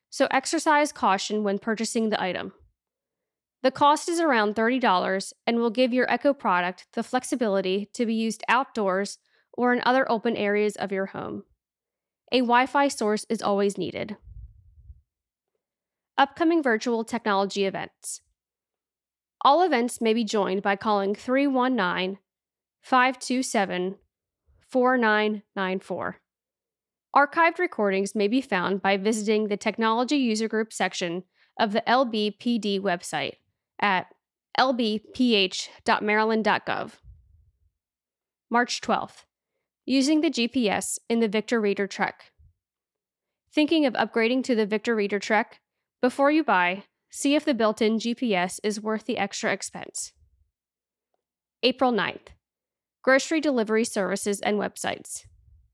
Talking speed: 115 wpm